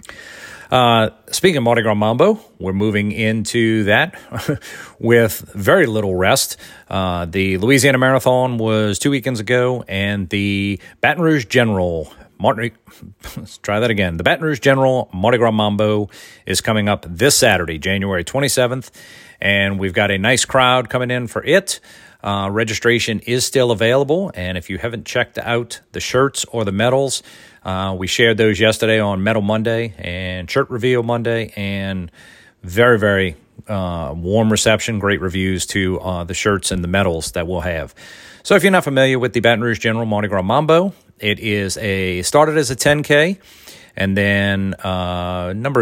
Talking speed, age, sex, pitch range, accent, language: 160 wpm, 40-59, male, 95-120 Hz, American, English